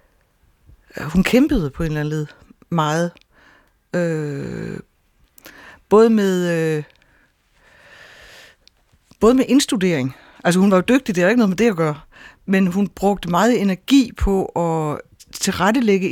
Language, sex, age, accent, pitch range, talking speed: Danish, female, 60-79, native, 155-200 Hz, 135 wpm